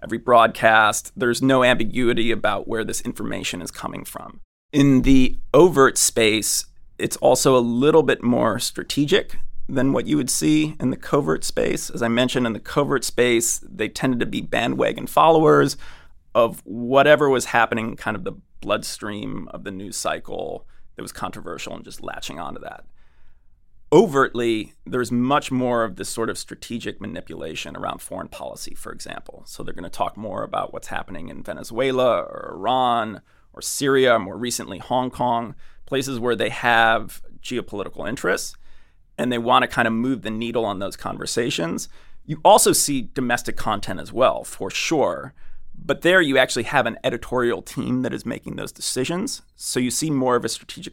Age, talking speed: 30-49, 170 wpm